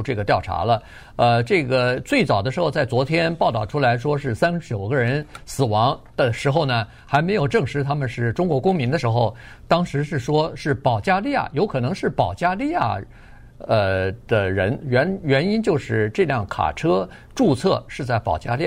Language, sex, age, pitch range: Chinese, male, 50-69, 120-150 Hz